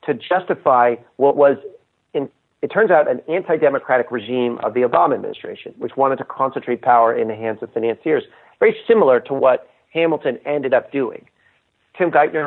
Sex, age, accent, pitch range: male, 40-59, American, 115-160 Hz